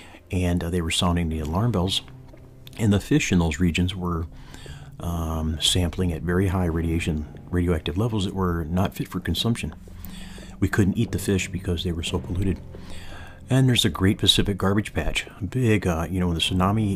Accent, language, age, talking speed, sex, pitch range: American, English, 40-59, 185 wpm, male, 85-105 Hz